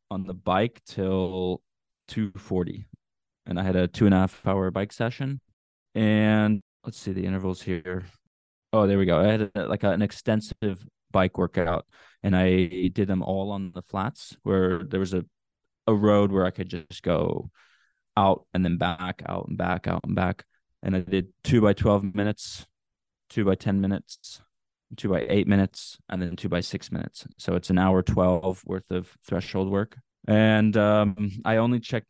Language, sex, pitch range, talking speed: English, male, 95-110 Hz, 185 wpm